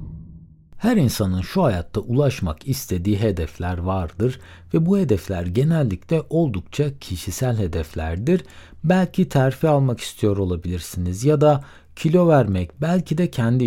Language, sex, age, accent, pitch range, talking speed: Turkish, male, 60-79, native, 95-150 Hz, 120 wpm